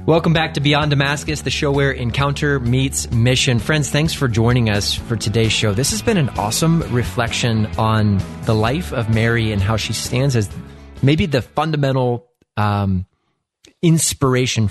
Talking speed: 165 wpm